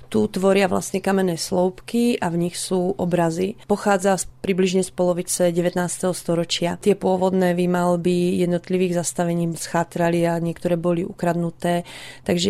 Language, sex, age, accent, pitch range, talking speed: Czech, female, 30-49, native, 175-190 Hz, 135 wpm